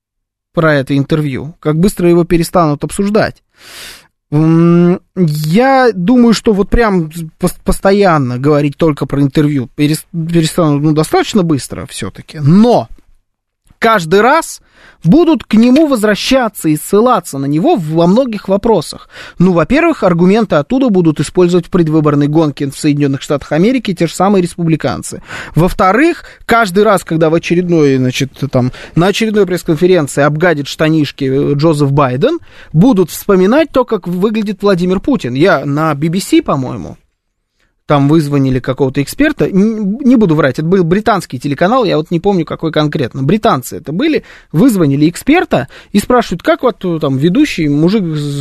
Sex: male